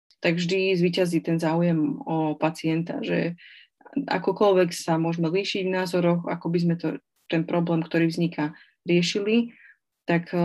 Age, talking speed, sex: 20-39, 140 wpm, female